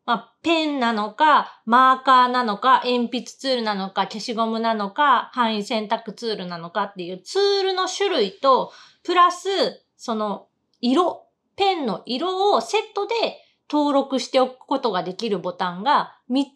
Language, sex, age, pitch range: Japanese, female, 30-49, 220-325 Hz